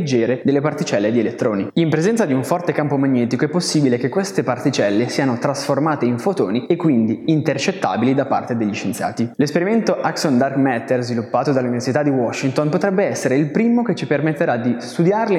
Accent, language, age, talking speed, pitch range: native, Italian, 20-39, 170 wpm, 125-165 Hz